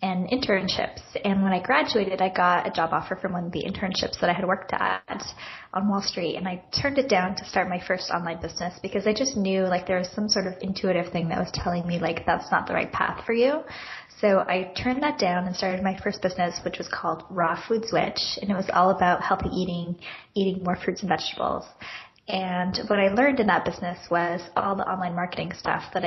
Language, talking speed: English, 235 wpm